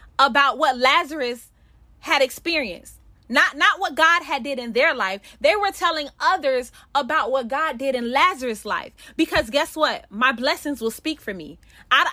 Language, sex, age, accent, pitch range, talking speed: English, female, 20-39, American, 265-340 Hz, 175 wpm